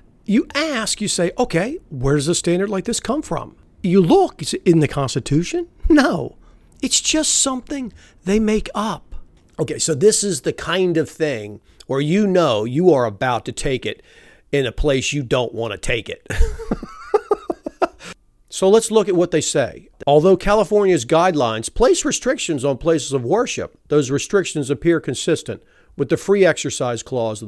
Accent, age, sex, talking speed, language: American, 40-59, male, 175 wpm, English